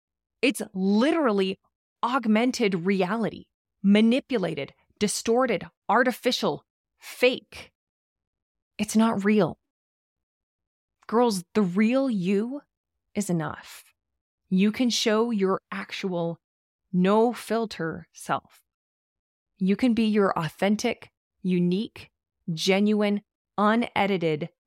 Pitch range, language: 175-220 Hz, English